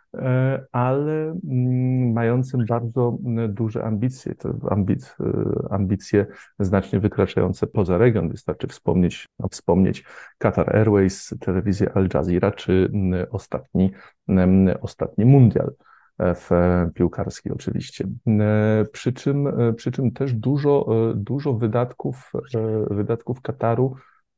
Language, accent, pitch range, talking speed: Polish, native, 95-120 Hz, 80 wpm